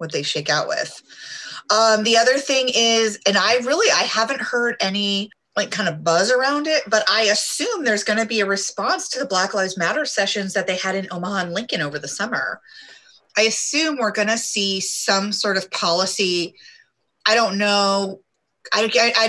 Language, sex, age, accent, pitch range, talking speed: English, female, 30-49, American, 175-230 Hz, 195 wpm